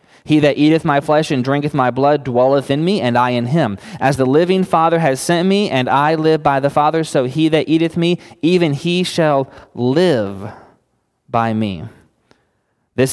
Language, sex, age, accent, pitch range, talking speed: English, male, 20-39, American, 115-150 Hz, 185 wpm